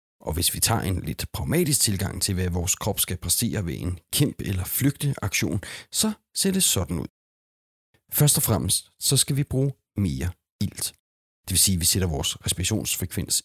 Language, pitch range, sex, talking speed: Danish, 95-120 Hz, male, 185 wpm